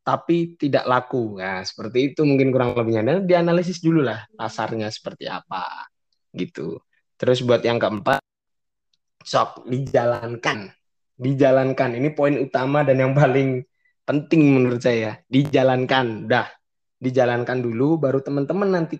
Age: 20-39